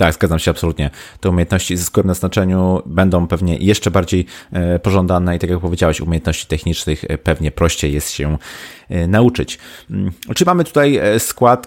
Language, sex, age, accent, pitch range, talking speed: Polish, male, 30-49, native, 75-95 Hz, 150 wpm